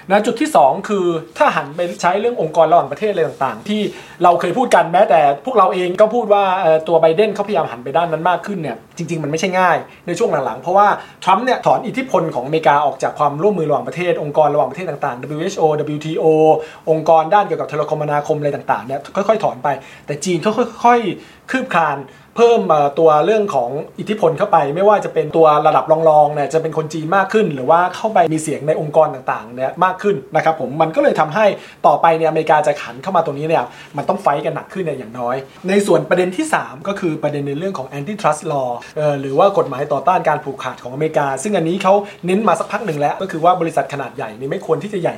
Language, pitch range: Thai, 150-195 Hz